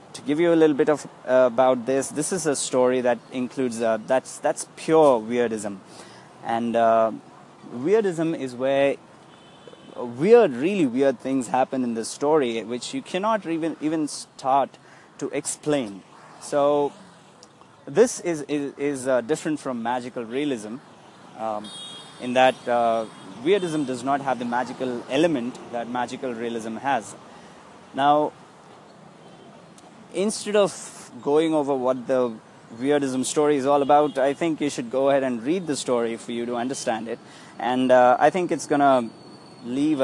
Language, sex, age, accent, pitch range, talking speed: English, male, 20-39, Indian, 120-150 Hz, 150 wpm